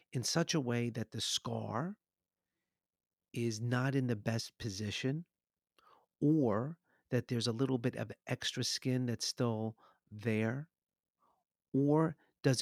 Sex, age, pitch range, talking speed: male, 50-69, 120-150 Hz, 130 wpm